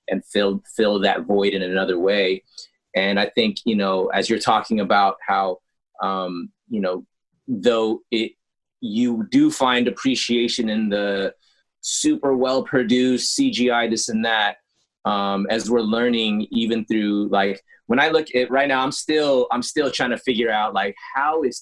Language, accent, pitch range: English, American, 110-140 Hz